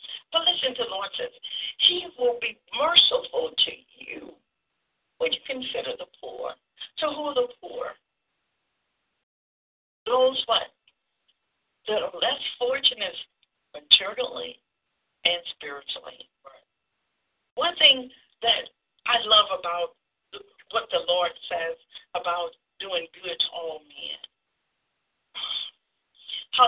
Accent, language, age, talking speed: American, English, 60-79, 110 wpm